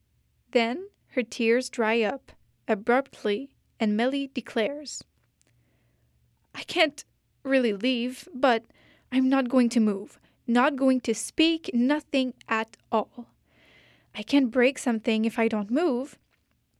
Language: French